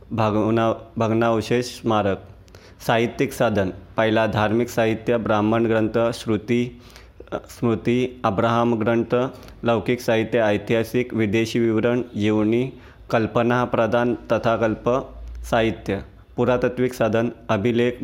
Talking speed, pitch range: 90 wpm, 110-120 Hz